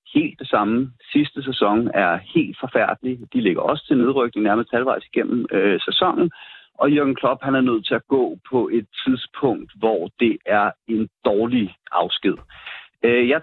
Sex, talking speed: male, 170 wpm